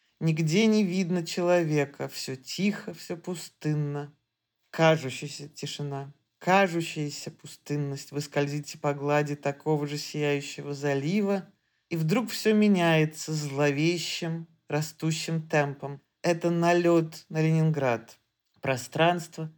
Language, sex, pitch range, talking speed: Russian, male, 150-185 Hz, 95 wpm